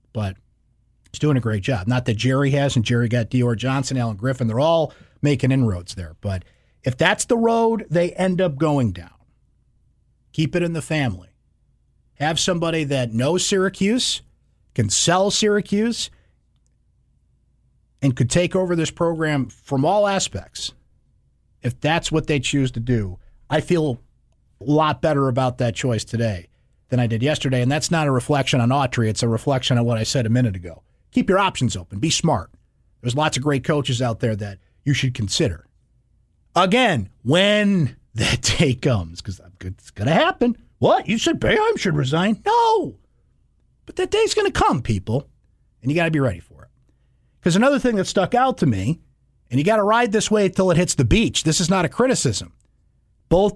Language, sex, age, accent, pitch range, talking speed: English, male, 50-69, American, 120-175 Hz, 185 wpm